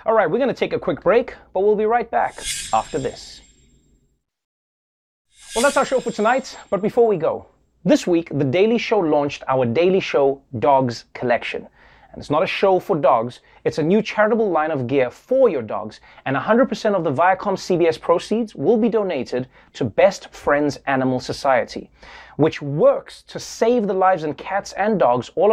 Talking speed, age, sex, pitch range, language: 185 wpm, 30-49, male, 160-235 Hz, English